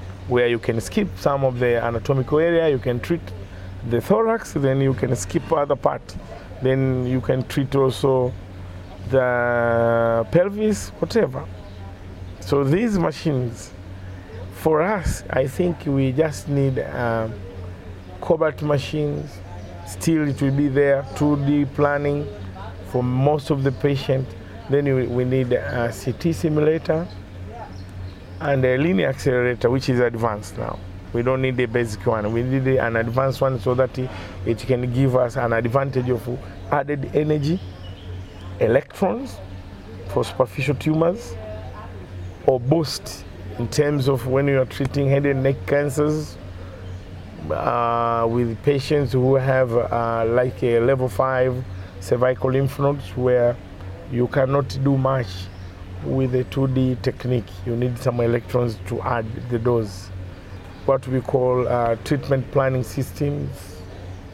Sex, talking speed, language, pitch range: male, 130 wpm, English, 95-135 Hz